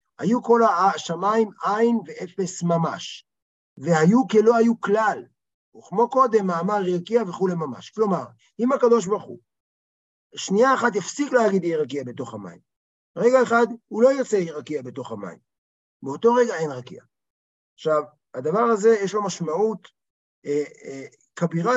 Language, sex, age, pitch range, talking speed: Hebrew, male, 50-69, 150-220 Hz, 140 wpm